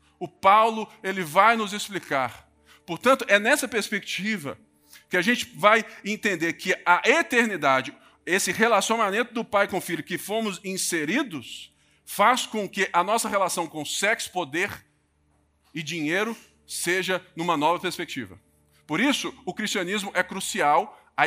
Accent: Brazilian